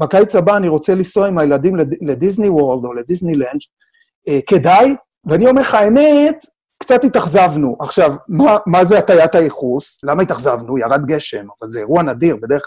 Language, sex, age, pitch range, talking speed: Hebrew, male, 40-59, 150-215 Hz, 165 wpm